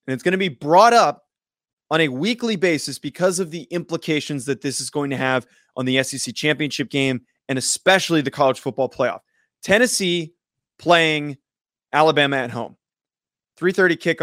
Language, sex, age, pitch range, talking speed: English, male, 20-39, 140-185 Hz, 170 wpm